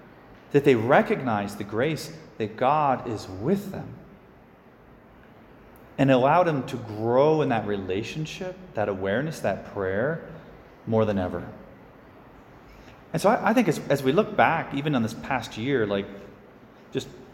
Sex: male